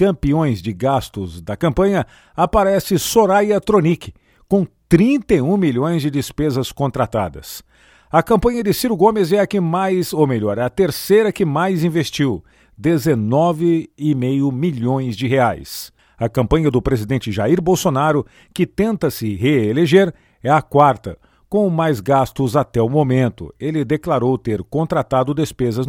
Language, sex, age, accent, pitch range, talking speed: Portuguese, male, 50-69, Brazilian, 125-180 Hz, 135 wpm